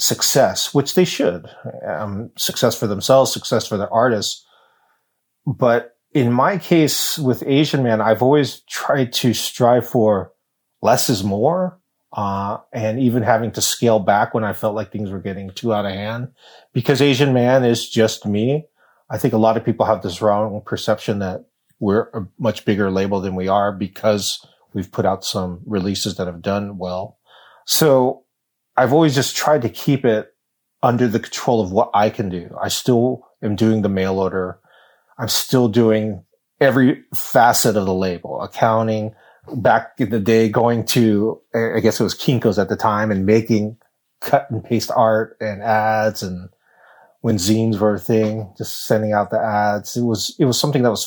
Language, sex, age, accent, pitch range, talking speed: English, male, 30-49, American, 105-120 Hz, 180 wpm